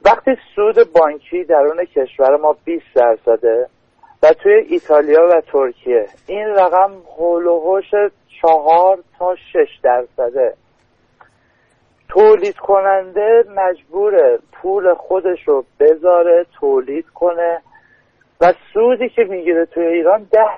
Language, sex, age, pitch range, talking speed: Persian, male, 50-69, 170-270 Hz, 105 wpm